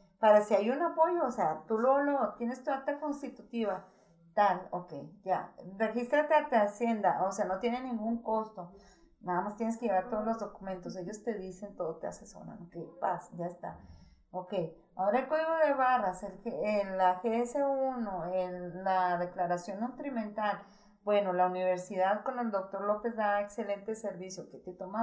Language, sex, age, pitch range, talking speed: Spanish, female, 40-59, 190-255 Hz, 175 wpm